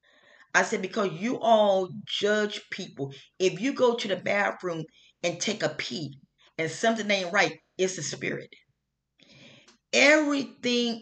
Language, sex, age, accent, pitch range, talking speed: English, female, 40-59, American, 150-210 Hz, 135 wpm